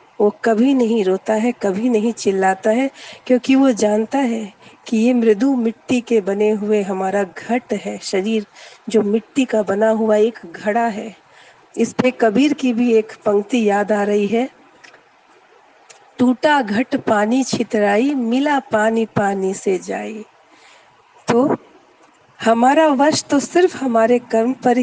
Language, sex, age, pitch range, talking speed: Hindi, female, 50-69, 210-255 Hz, 145 wpm